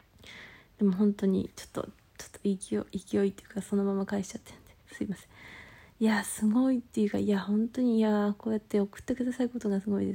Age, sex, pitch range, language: 20-39, female, 200-240 Hz, Japanese